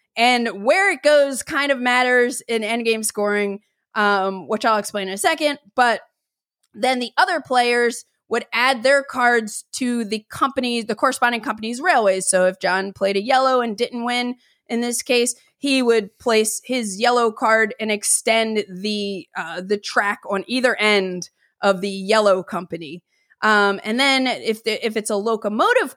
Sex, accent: female, American